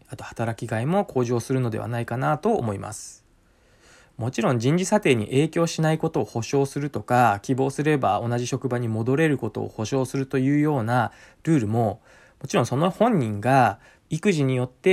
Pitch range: 120-155 Hz